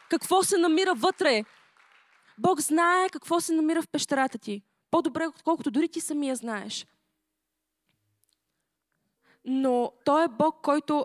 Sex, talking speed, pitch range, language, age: female, 125 wpm, 230-305 Hz, Bulgarian, 20-39